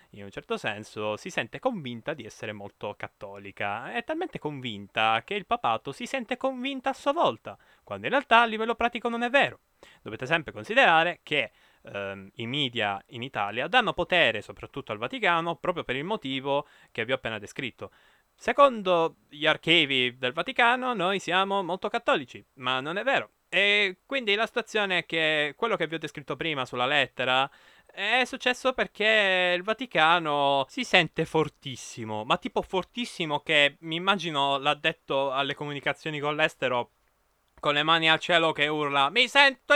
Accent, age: native, 20-39